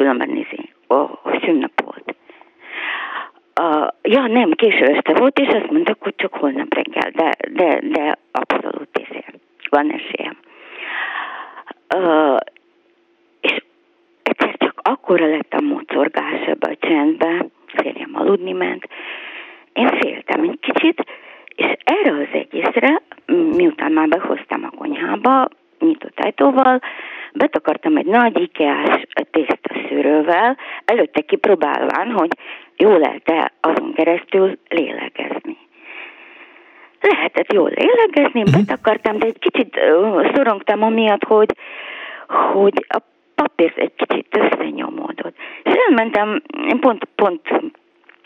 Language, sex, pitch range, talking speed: Hungarian, female, 240-350 Hz, 105 wpm